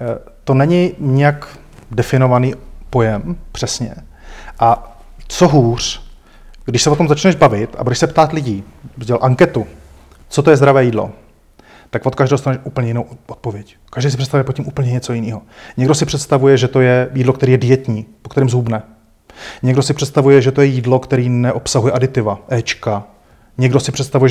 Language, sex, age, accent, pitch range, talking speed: Czech, male, 30-49, native, 120-140 Hz, 170 wpm